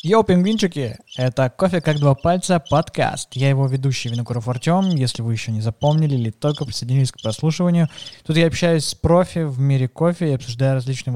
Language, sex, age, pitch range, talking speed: Russian, male, 20-39, 115-145 Hz, 185 wpm